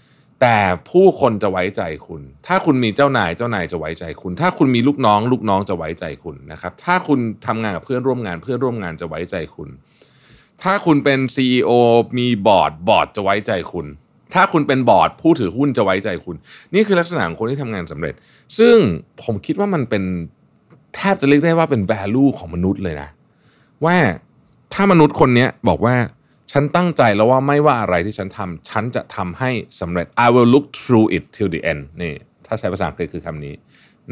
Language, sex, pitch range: Thai, male, 90-140 Hz